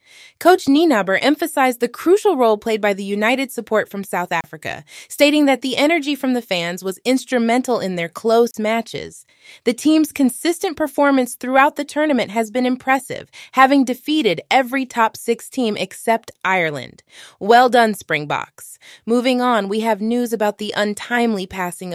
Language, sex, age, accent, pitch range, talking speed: English, female, 20-39, American, 205-265 Hz, 155 wpm